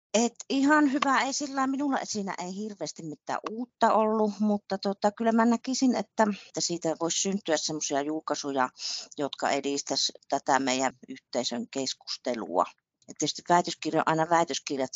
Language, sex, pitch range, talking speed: Finnish, female, 130-200 Hz, 140 wpm